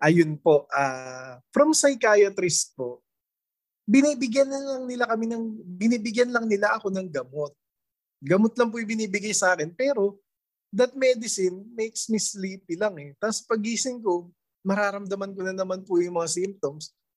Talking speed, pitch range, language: 145 wpm, 170-225 Hz, Filipino